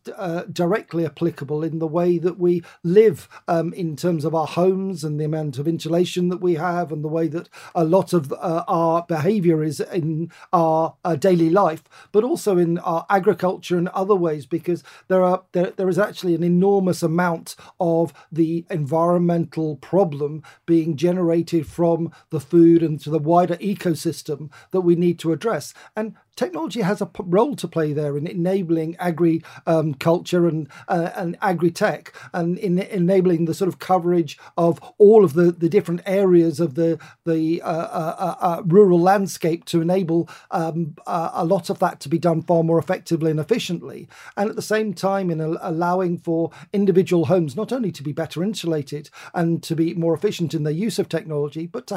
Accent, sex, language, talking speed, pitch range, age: British, male, English, 185 wpm, 165-185 Hz, 50-69